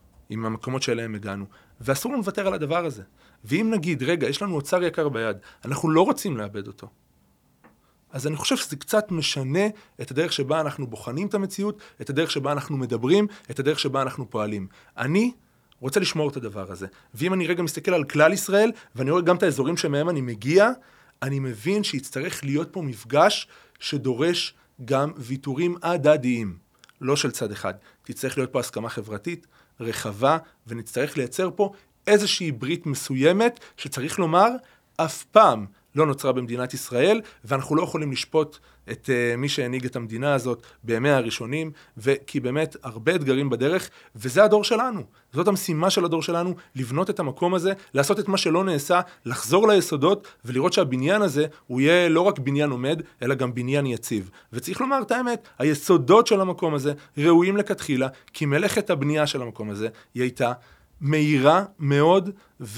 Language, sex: Hebrew, male